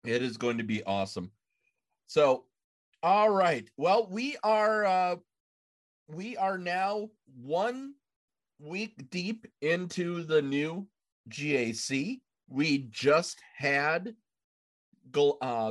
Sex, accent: male, American